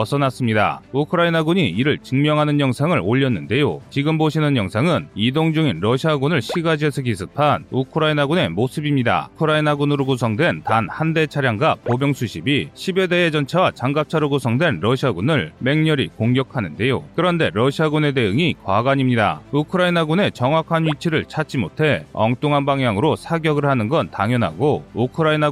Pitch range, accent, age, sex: 125-155 Hz, native, 30-49, male